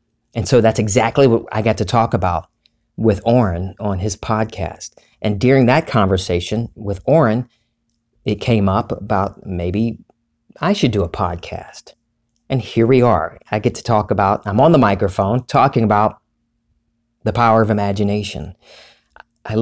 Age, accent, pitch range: 40-59, American, 105-120 Hz